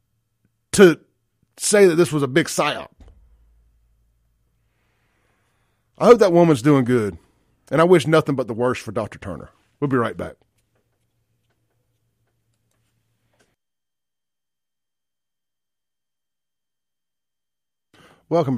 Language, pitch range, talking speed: English, 105-140 Hz, 95 wpm